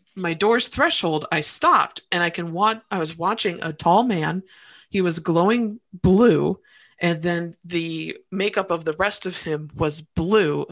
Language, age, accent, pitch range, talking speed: English, 30-49, American, 170-215 Hz, 170 wpm